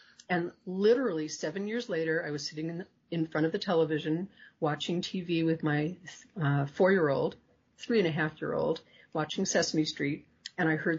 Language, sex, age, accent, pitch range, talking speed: English, female, 40-59, American, 160-220 Hz, 155 wpm